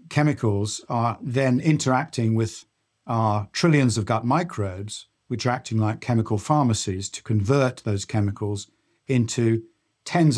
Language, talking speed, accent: English, 125 wpm, British